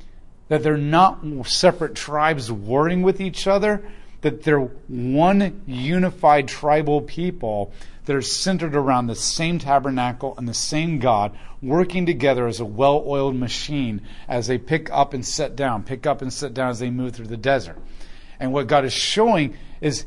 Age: 40-59